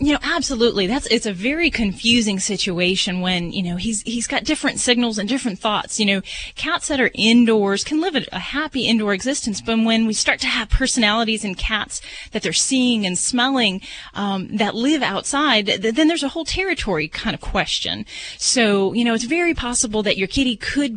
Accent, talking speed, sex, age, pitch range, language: American, 195 wpm, female, 30-49, 190-240 Hz, English